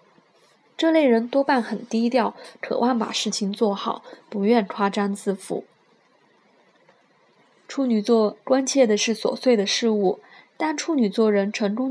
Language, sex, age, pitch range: Chinese, female, 20-39, 205-250 Hz